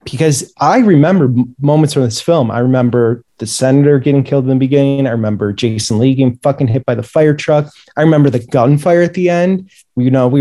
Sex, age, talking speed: male, 20-39, 215 wpm